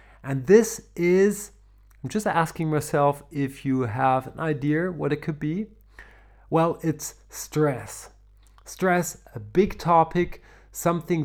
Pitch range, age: 140-170 Hz, 30-49